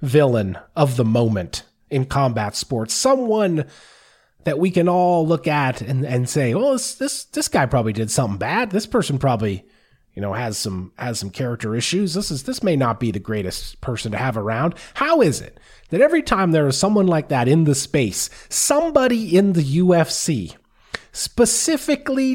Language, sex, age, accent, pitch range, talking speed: English, male, 30-49, American, 125-195 Hz, 185 wpm